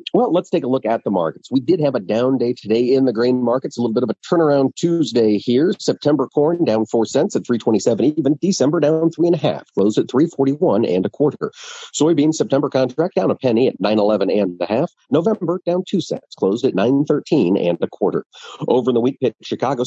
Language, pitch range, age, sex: English, 110-165 Hz, 50-69, male